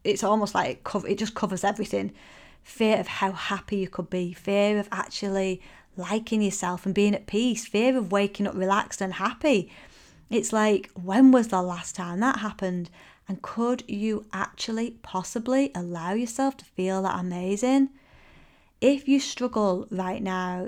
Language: English